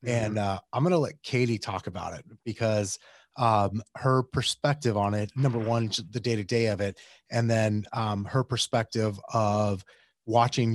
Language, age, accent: English, 30-49, American